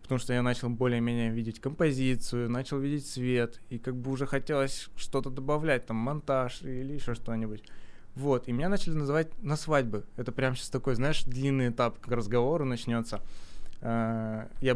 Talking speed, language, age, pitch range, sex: 165 wpm, Russian, 20-39, 120-140 Hz, male